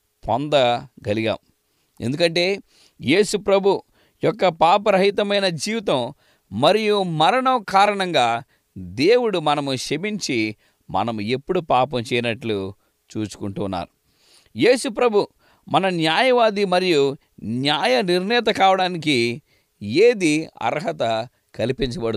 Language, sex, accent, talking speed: English, male, Indian, 85 wpm